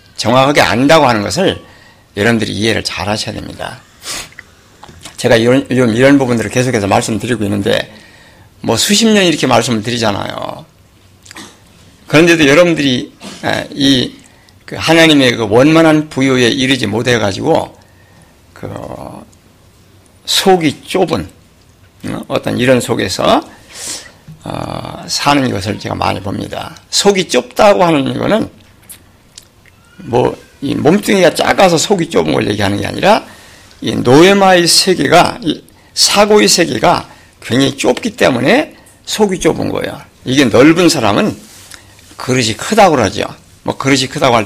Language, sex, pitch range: Korean, male, 100-155 Hz